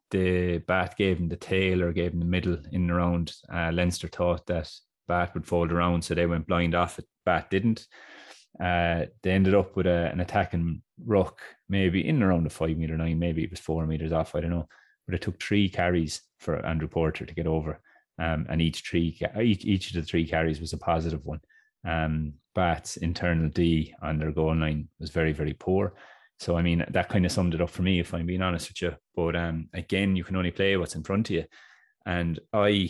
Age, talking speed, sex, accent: 30-49, 225 wpm, male, Irish